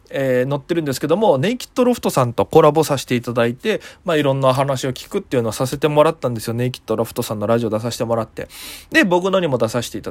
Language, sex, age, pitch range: Japanese, male, 20-39, 125-200 Hz